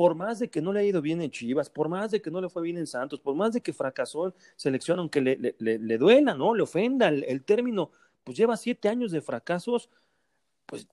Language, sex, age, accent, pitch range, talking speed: Spanish, male, 40-59, Mexican, 135-210 Hz, 260 wpm